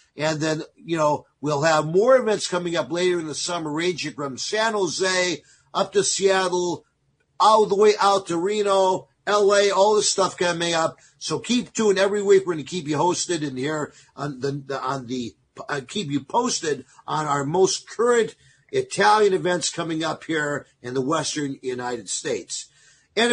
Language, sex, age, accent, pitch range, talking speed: English, male, 50-69, American, 155-210 Hz, 175 wpm